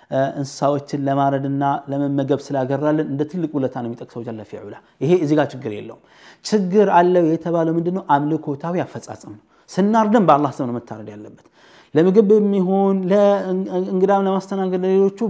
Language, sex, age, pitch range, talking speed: Amharic, male, 30-49, 135-180 Hz, 125 wpm